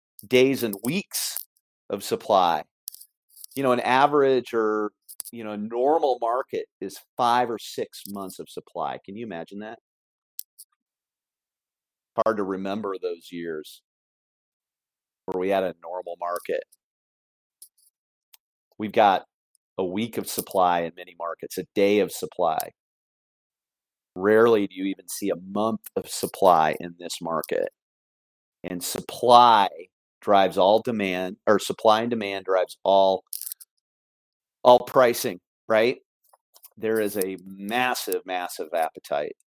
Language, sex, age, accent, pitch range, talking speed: English, male, 40-59, American, 90-110 Hz, 125 wpm